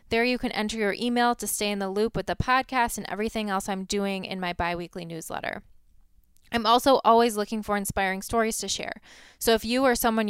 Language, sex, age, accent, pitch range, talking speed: English, female, 20-39, American, 200-240 Hz, 215 wpm